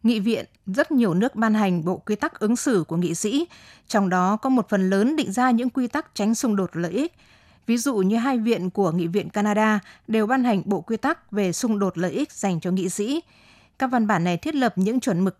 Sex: female